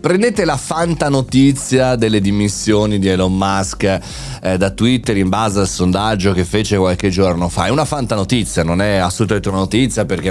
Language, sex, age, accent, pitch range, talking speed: Italian, male, 30-49, native, 100-135 Hz, 180 wpm